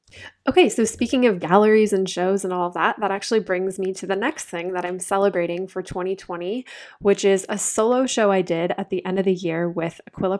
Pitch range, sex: 180-215 Hz, female